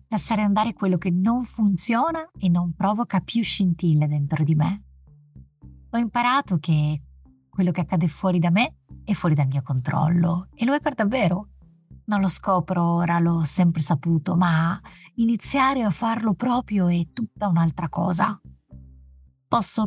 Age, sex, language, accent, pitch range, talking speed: 30-49, female, Italian, native, 155-205 Hz, 150 wpm